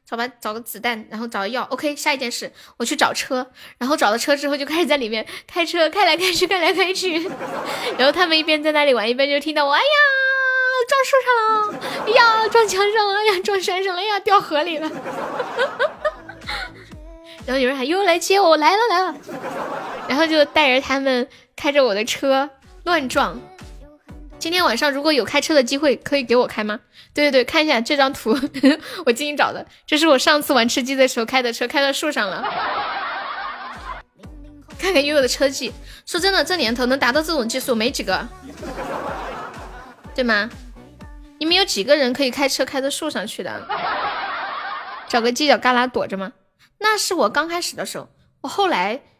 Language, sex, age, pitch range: Chinese, female, 10-29, 250-330 Hz